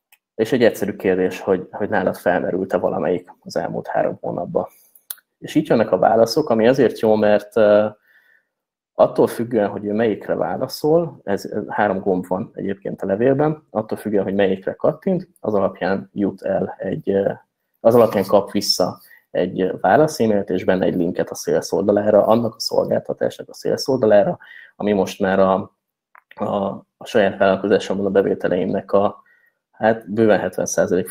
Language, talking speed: Hungarian, 150 wpm